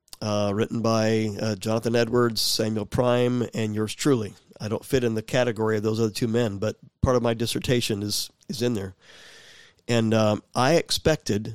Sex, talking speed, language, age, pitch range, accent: male, 180 wpm, English, 50-69, 105-130 Hz, American